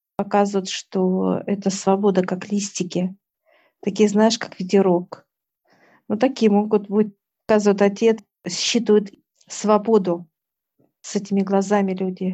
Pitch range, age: 195-215 Hz, 50-69